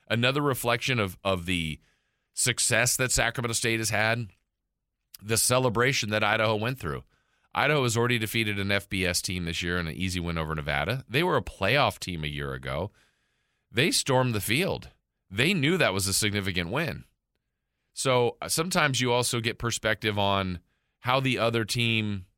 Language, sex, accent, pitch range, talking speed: English, male, American, 90-120 Hz, 165 wpm